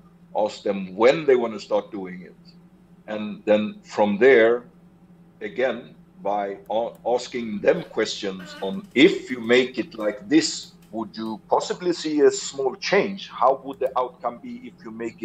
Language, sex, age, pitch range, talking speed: English, male, 50-69, 125-190 Hz, 155 wpm